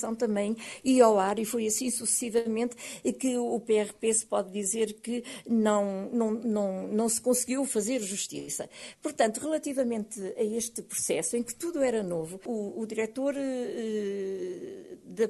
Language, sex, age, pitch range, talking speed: Portuguese, female, 50-69, 215-275 Hz, 155 wpm